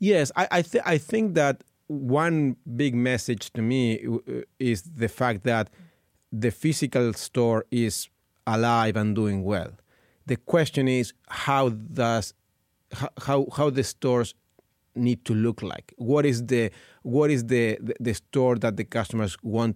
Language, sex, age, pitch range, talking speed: English, male, 40-59, 110-135 Hz, 160 wpm